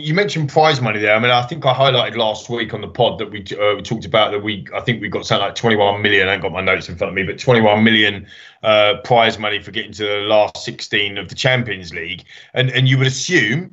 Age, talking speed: 20-39, 270 wpm